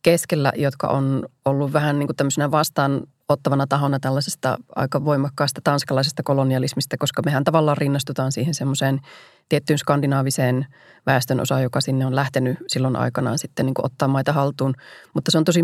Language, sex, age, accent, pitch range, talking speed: Finnish, female, 30-49, native, 135-150 Hz, 140 wpm